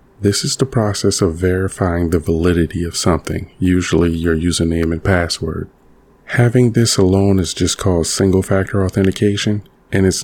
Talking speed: 145 wpm